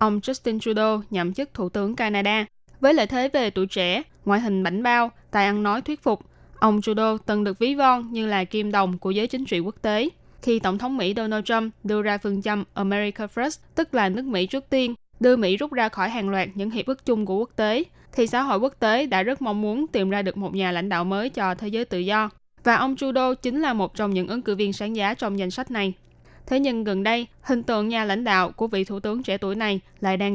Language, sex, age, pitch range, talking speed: Vietnamese, female, 10-29, 200-240 Hz, 255 wpm